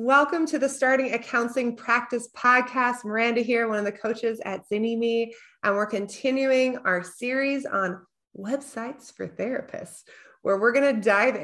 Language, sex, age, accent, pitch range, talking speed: English, female, 20-39, American, 175-235 Hz, 145 wpm